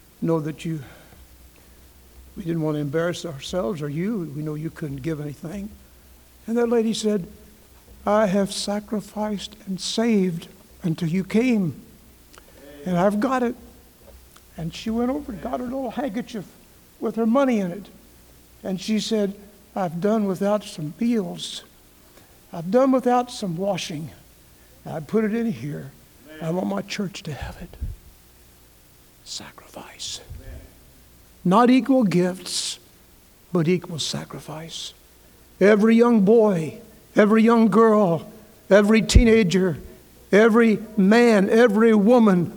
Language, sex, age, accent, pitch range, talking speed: English, male, 60-79, American, 145-210 Hz, 130 wpm